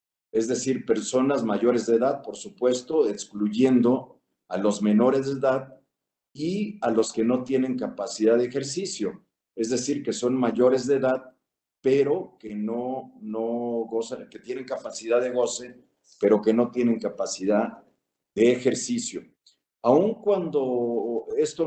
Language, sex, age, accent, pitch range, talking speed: Spanish, male, 50-69, Mexican, 115-145 Hz, 140 wpm